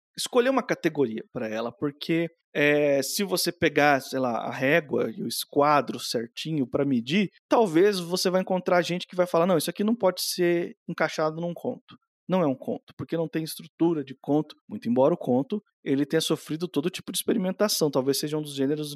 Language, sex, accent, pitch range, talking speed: Portuguese, male, Brazilian, 155-200 Hz, 195 wpm